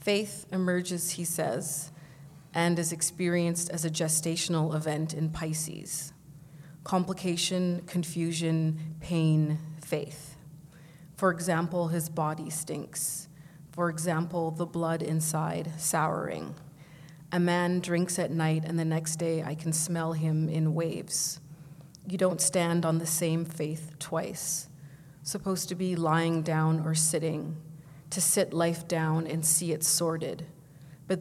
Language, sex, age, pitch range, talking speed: English, female, 30-49, 155-170 Hz, 130 wpm